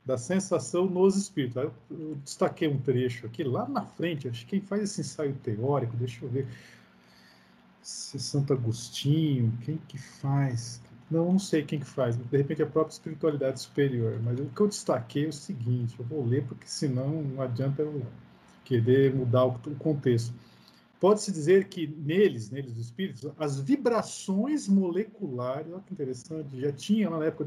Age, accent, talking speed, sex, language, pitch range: 50-69, Brazilian, 165 wpm, male, Portuguese, 130-185 Hz